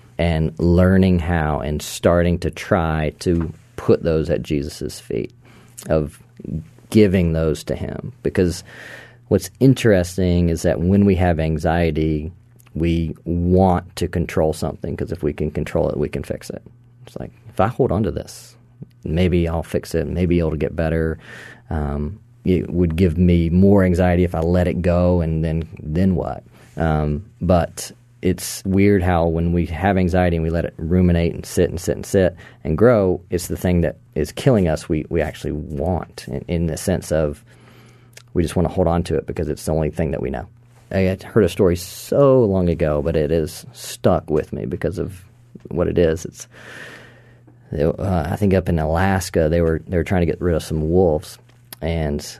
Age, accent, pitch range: 40-59, American, 80-95 Hz